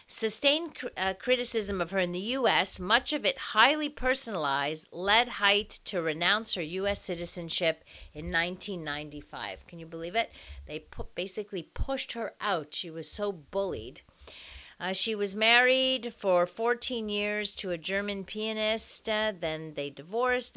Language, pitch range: English, 160-220 Hz